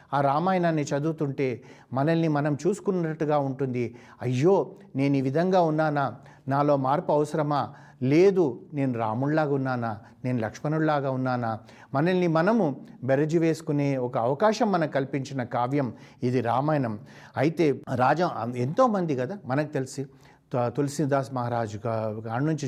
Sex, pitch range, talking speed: male, 125-160 Hz, 115 wpm